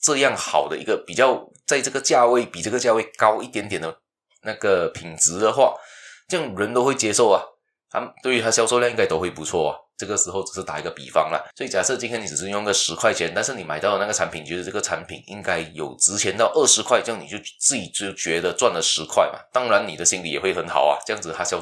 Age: 20-39